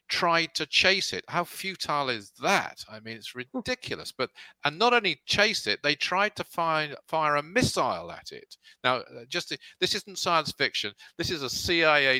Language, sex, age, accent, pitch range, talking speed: English, male, 50-69, British, 125-190 Hz, 185 wpm